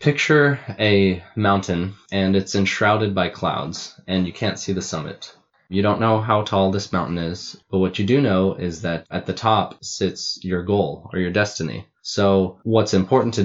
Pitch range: 90-100 Hz